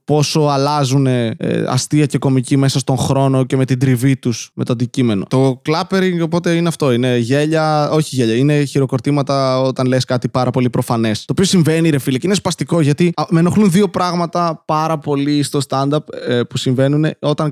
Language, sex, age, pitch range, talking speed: Greek, male, 20-39, 135-175 Hz, 190 wpm